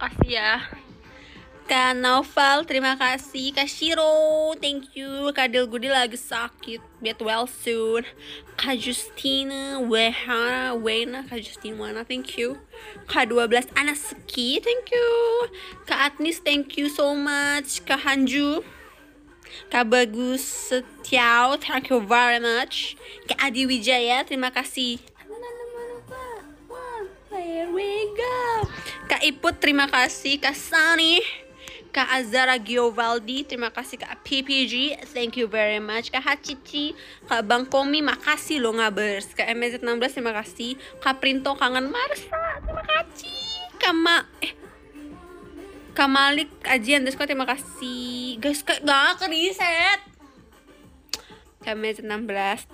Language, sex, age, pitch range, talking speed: Malay, female, 20-39, 245-310 Hz, 115 wpm